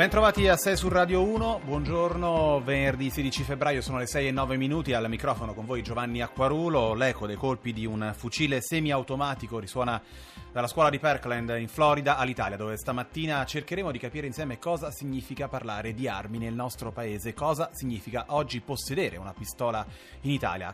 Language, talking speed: Italian, 170 wpm